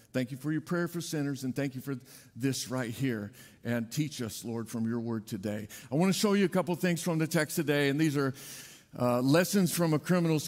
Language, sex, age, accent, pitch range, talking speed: English, male, 50-69, American, 145-210 Hz, 240 wpm